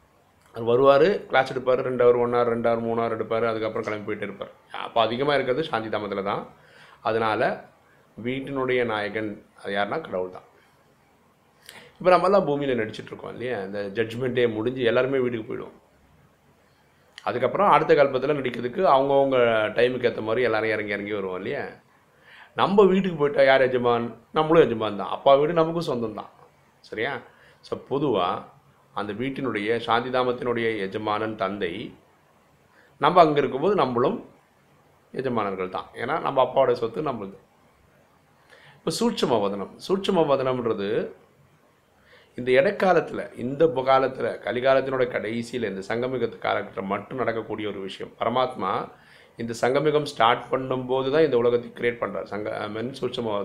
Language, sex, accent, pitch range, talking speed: Tamil, male, native, 110-135 Hz, 120 wpm